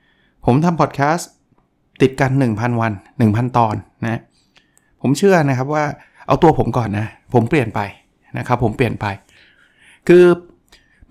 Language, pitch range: Thai, 120-155 Hz